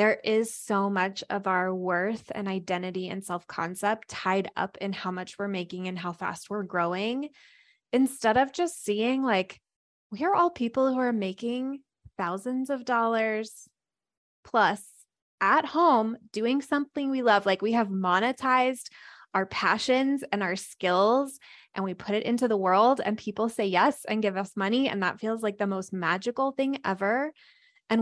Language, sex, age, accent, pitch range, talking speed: English, female, 20-39, American, 190-245 Hz, 170 wpm